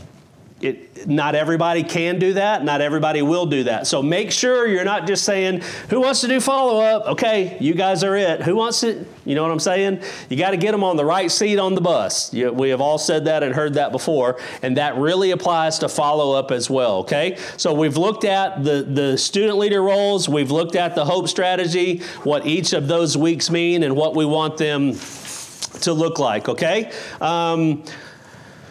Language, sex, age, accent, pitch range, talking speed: English, male, 40-59, American, 150-190 Hz, 205 wpm